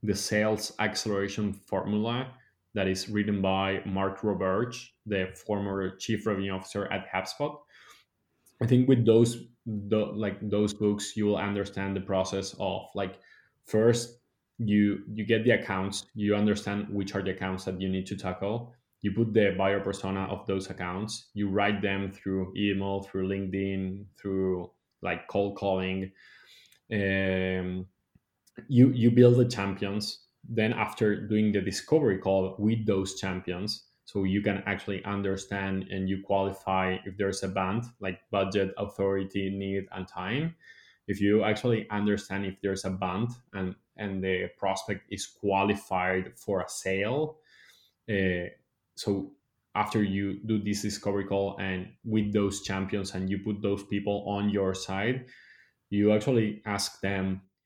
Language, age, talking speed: English, 20-39, 145 wpm